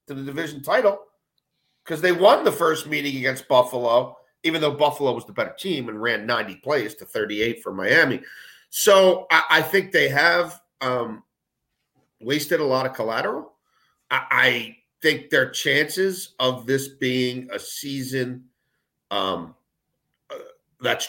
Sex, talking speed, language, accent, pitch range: male, 150 wpm, English, American, 125-165 Hz